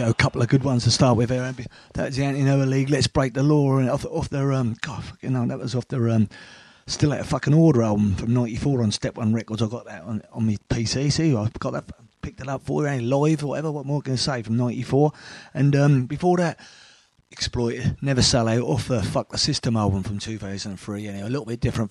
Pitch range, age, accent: 115-140 Hz, 30-49, British